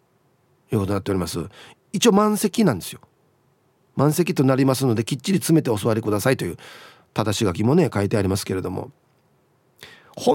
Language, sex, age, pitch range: Japanese, male, 40-59, 120-180 Hz